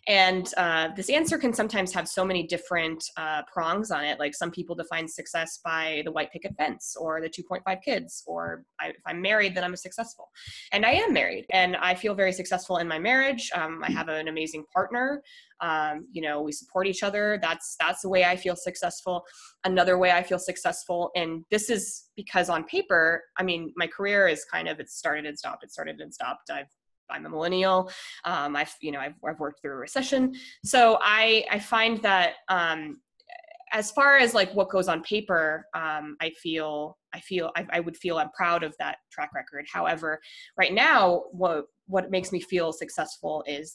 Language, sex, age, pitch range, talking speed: English, female, 20-39, 160-205 Hz, 205 wpm